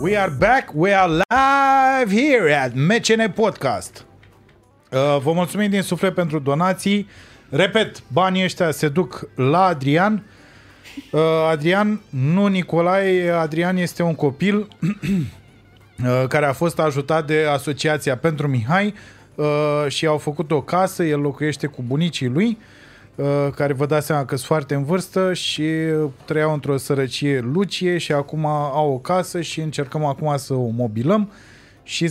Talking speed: 140 wpm